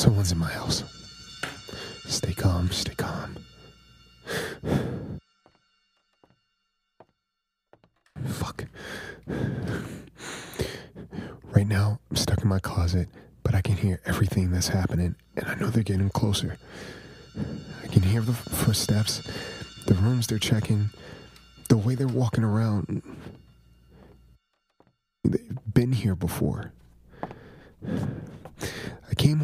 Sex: male